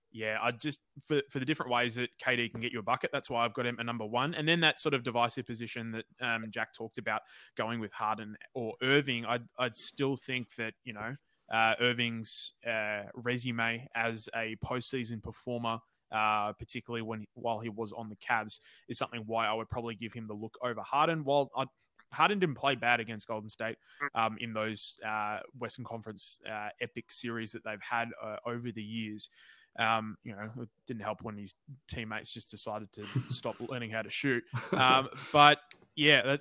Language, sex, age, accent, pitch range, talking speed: English, male, 20-39, Australian, 110-125 Hz, 200 wpm